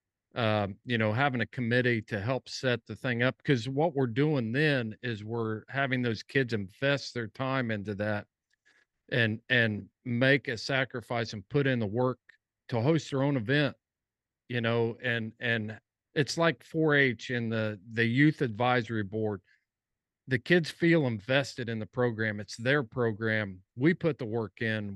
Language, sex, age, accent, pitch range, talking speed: English, male, 50-69, American, 110-135 Hz, 170 wpm